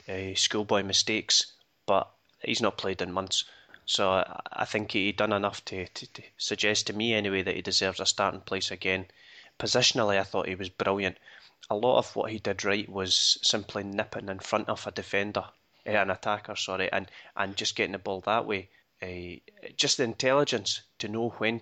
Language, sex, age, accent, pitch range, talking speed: English, male, 20-39, British, 95-110 Hz, 195 wpm